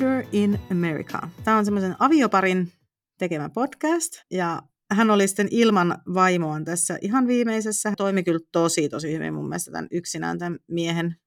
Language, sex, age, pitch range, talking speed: Finnish, female, 40-59, 155-195 Hz, 155 wpm